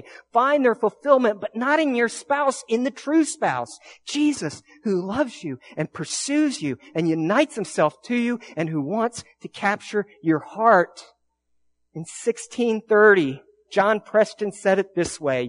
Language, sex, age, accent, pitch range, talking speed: English, male, 50-69, American, 160-235 Hz, 150 wpm